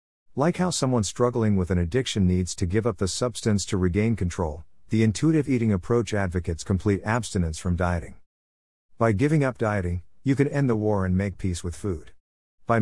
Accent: American